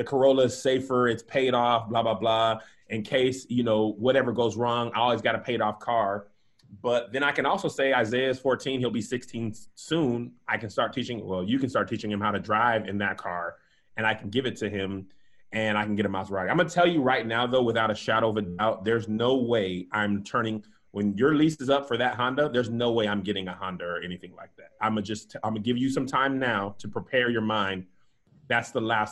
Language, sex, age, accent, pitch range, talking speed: English, male, 30-49, American, 110-150 Hz, 245 wpm